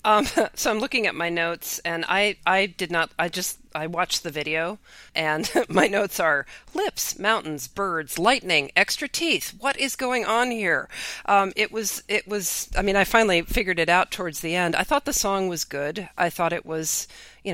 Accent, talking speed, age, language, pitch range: American, 200 wpm, 40-59, English, 150-195 Hz